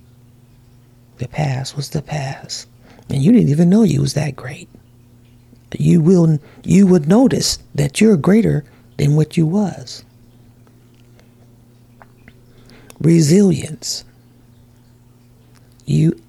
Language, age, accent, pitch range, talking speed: English, 50-69, American, 120-155 Hz, 105 wpm